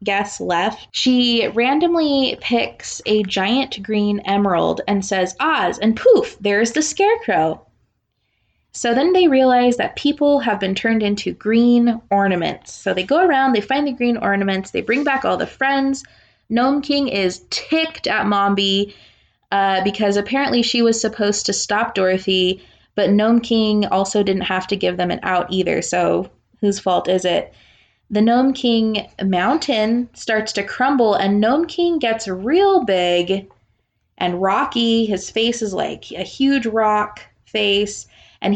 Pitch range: 200-265 Hz